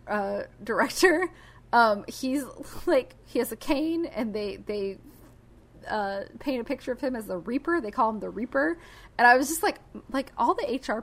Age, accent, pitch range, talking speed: 20-39, American, 195-275 Hz, 190 wpm